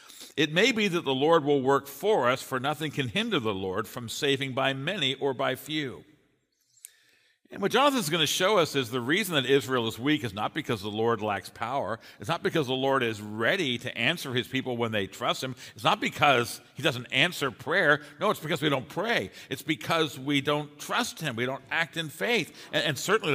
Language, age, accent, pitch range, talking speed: English, 50-69, American, 120-160 Hz, 220 wpm